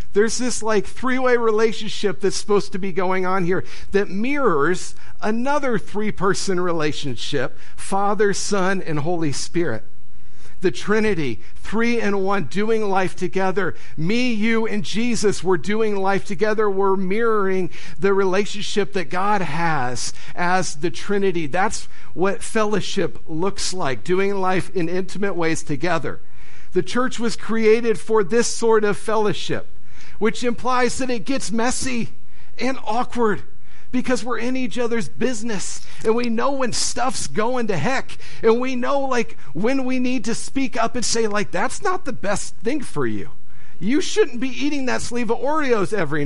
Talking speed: 155 wpm